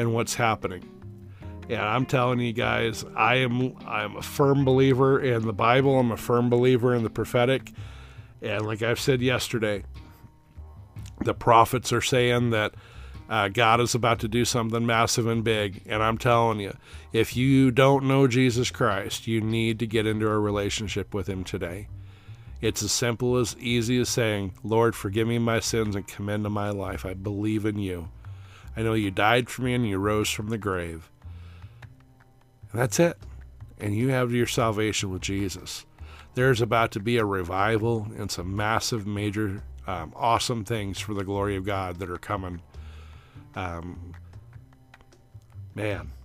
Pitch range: 100-120 Hz